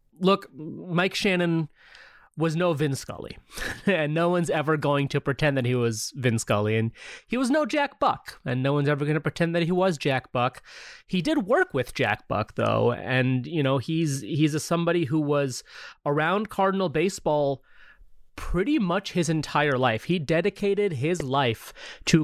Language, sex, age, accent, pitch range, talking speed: English, male, 30-49, American, 140-185 Hz, 180 wpm